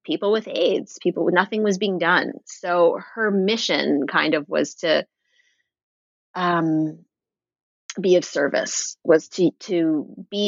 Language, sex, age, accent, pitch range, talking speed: English, female, 30-49, American, 160-205 Hz, 135 wpm